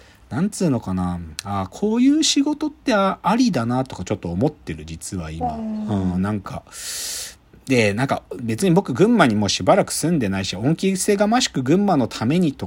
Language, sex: Japanese, male